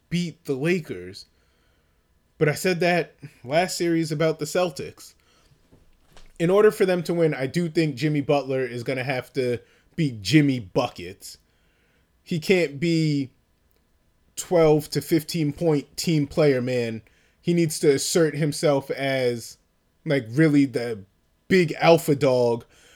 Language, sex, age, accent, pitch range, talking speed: English, male, 20-39, American, 110-160 Hz, 135 wpm